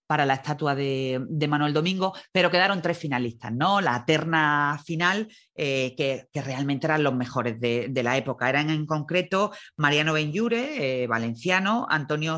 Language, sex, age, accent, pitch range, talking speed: Spanish, female, 40-59, Spanish, 135-170 Hz, 165 wpm